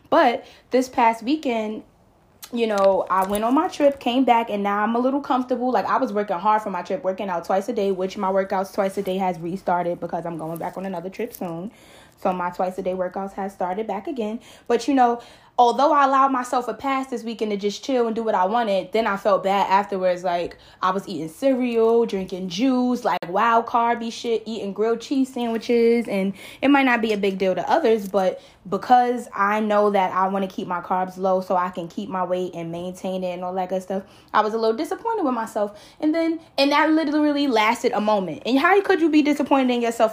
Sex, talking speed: female, 235 wpm